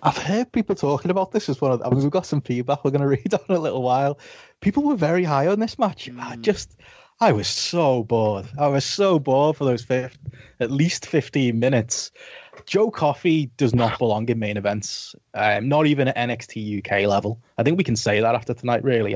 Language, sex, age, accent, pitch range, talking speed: English, male, 20-39, British, 125-160 Hz, 225 wpm